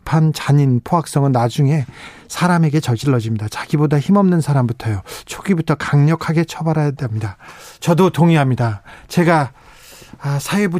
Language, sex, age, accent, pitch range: Korean, male, 40-59, native, 145-190 Hz